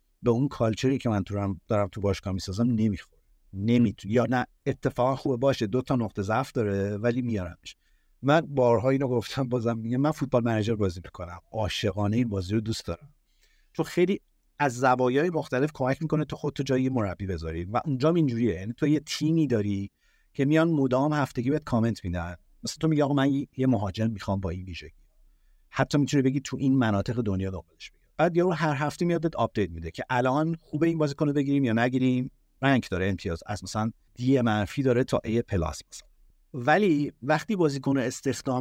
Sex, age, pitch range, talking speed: male, 50-69, 110-140 Hz, 185 wpm